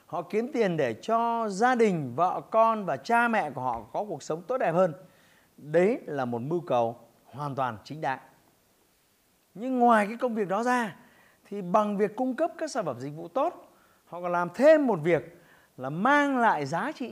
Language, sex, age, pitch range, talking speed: Vietnamese, male, 30-49, 160-240 Hz, 205 wpm